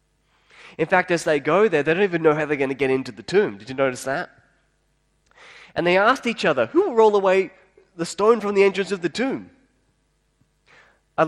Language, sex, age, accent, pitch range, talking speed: English, male, 20-39, Australian, 130-190 Hz, 215 wpm